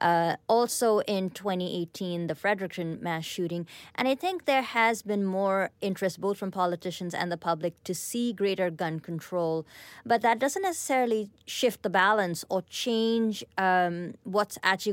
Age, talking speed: 30-49, 155 wpm